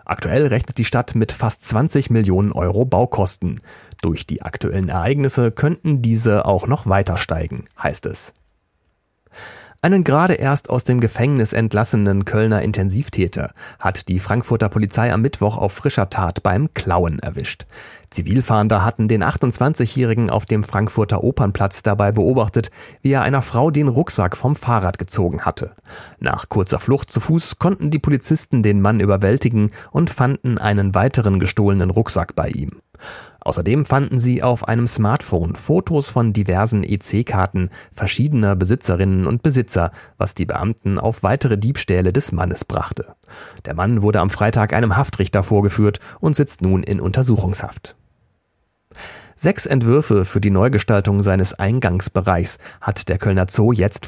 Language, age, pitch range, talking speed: German, 40-59, 95-125 Hz, 145 wpm